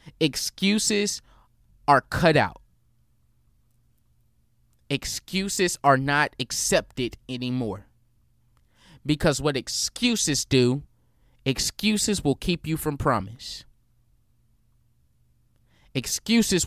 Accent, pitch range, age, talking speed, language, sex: American, 115-155 Hz, 20-39, 70 wpm, English, male